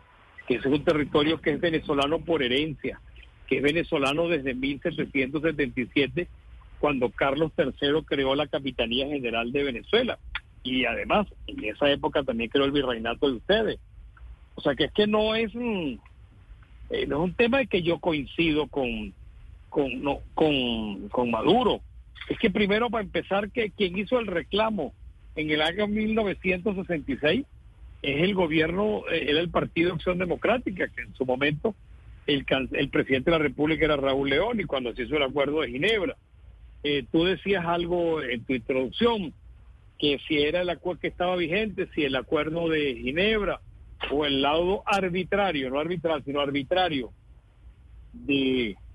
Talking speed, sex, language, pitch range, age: 160 wpm, male, Spanish, 135-180 Hz, 50-69